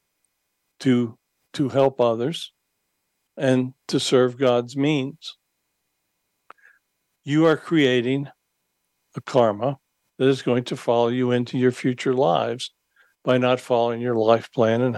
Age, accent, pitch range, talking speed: 60-79, American, 120-140 Hz, 125 wpm